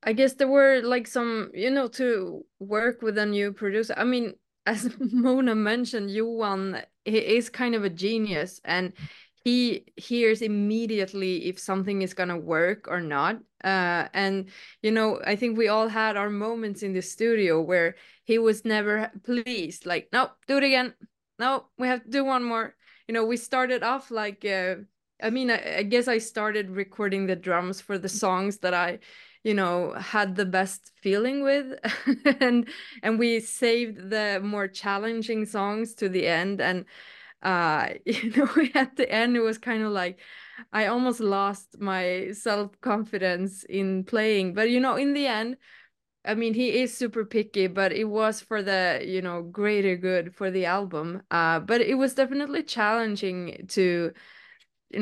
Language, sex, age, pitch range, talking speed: English, female, 20-39, 190-235 Hz, 175 wpm